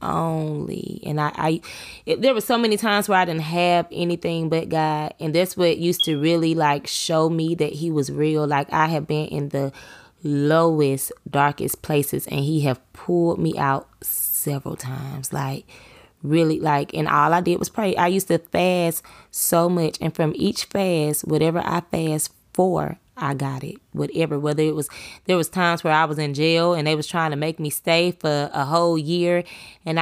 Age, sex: 20-39, female